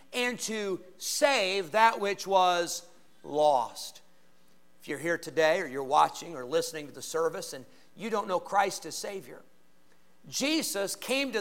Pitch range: 200-305 Hz